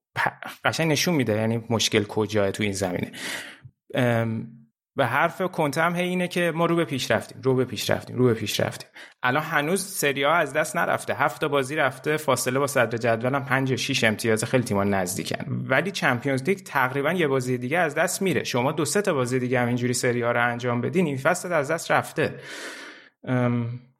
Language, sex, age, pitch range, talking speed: Persian, male, 30-49, 115-145 Hz, 205 wpm